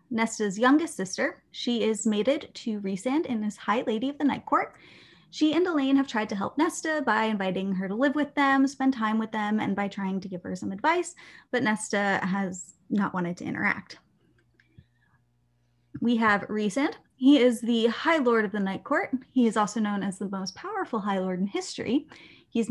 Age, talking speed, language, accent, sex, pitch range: 20-39, 200 wpm, English, American, female, 195-265 Hz